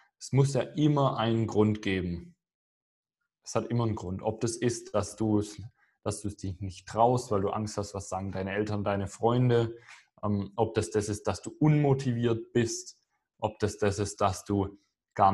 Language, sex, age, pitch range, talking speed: German, male, 20-39, 100-115 Hz, 185 wpm